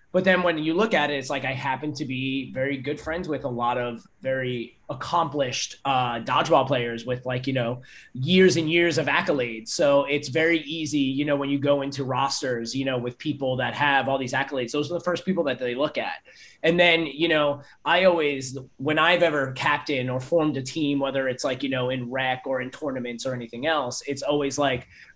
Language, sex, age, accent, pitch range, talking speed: English, male, 30-49, American, 130-170 Hz, 220 wpm